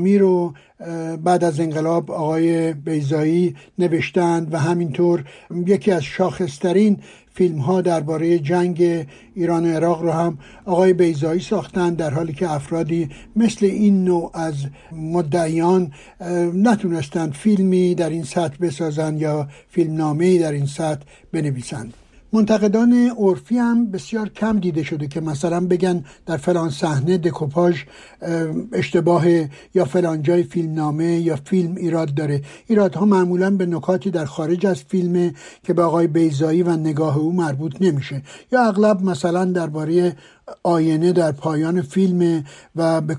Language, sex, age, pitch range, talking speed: Persian, male, 60-79, 160-180 Hz, 130 wpm